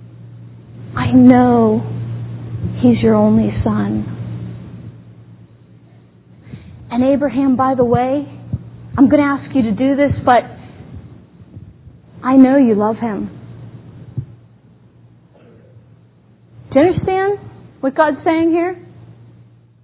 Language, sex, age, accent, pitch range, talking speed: English, female, 30-49, American, 225-370 Hz, 95 wpm